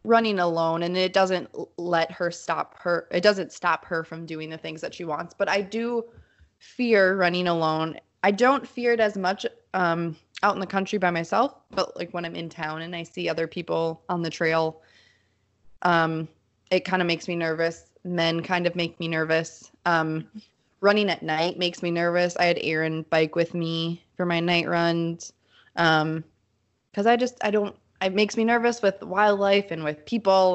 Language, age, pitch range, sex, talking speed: English, 20-39, 165-200 Hz, female, 195 wpm